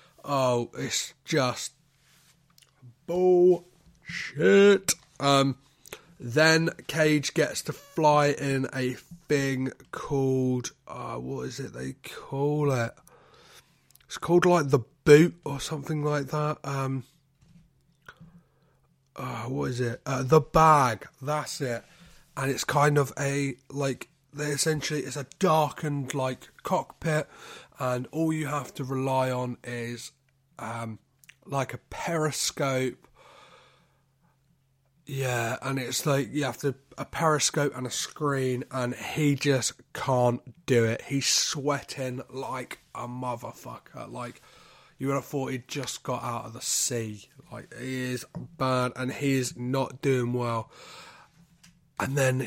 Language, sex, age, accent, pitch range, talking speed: English, male, 30-49, British, 130-150 Hz, 130 wpm